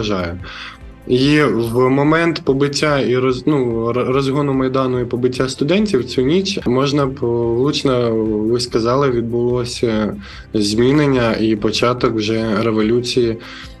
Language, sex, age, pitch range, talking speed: Ukrainian, male, 20-39, 115-135 Hz, 100 wpm